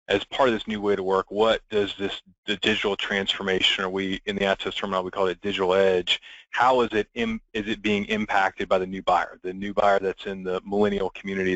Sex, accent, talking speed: male, American, 235 wpm